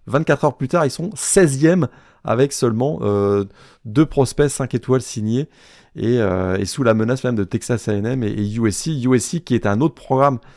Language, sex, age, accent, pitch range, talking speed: French, male, 30-49, French, 110-145 Hz, 195 wpm